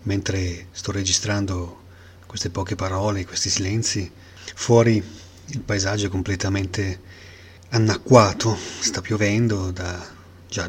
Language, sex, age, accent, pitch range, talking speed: Italian, male, 30-49, native, 90-105 Hz, 100 wpm